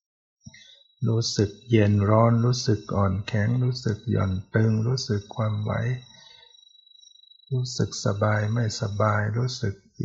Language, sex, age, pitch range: Thai, male, 60-79, 105-125 Hz